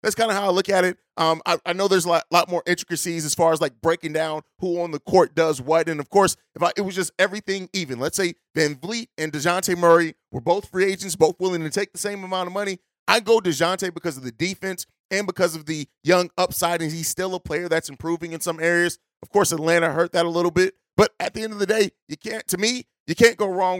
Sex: male